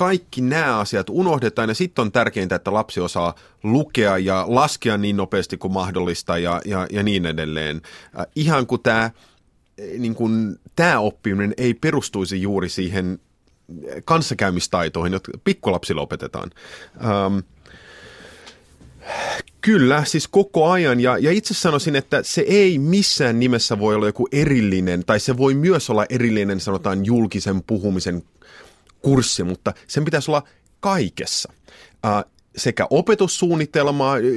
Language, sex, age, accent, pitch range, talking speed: Finnish, male, 30-49, native, 90-135 Hz, 125 wpm